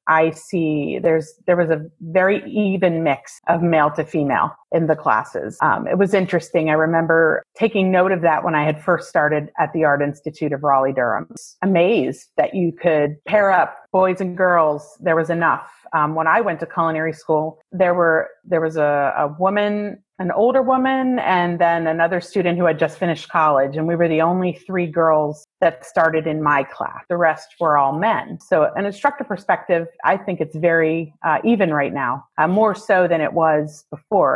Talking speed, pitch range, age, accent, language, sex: 195 wpm, 155-190 Hz, 30-49, American, English, female